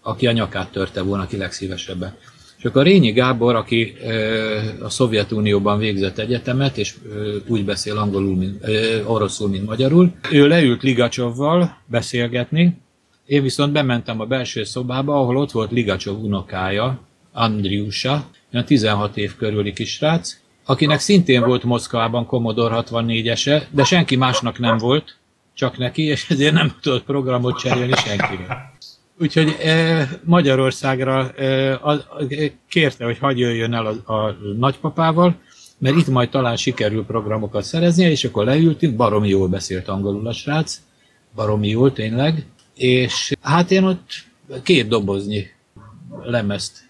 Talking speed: 130 wpm